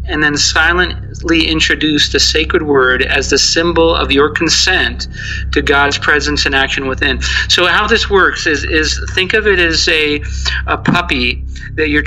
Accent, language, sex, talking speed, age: American, English, male, 170 wpm, 40-59